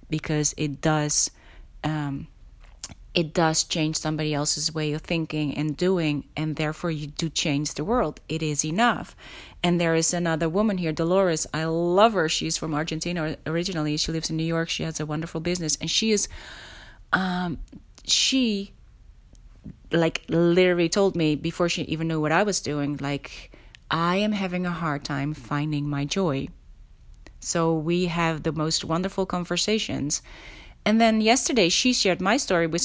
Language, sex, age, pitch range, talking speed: Dutch, female, 30-49, 155-185 Hz, 165 wpm